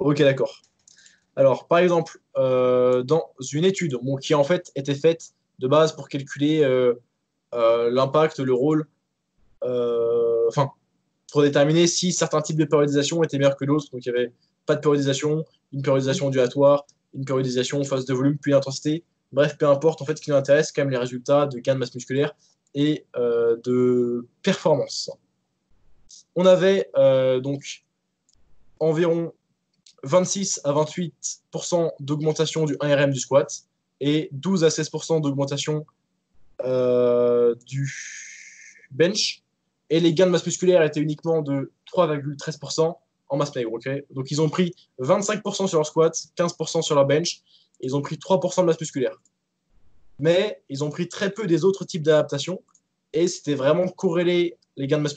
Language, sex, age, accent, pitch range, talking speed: French, male, 20-39, French, 135-170 Hz, 160 wpm